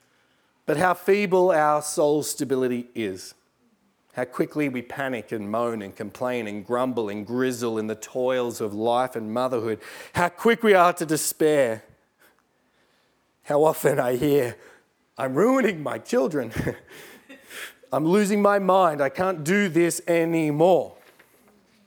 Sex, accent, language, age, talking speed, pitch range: male, Australian, English, 30-49, 135 wpm, 115-170 Hz